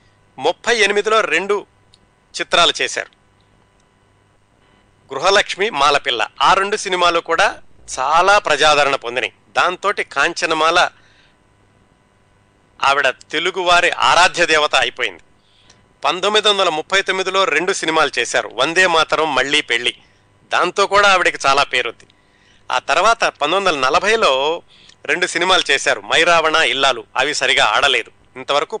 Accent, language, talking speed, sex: native, Telugu, 100 wpm, male